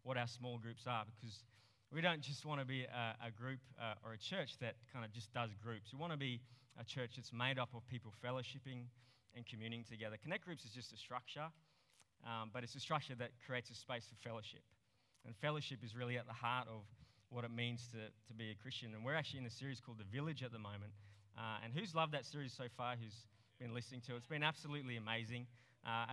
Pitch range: 110-130 Hz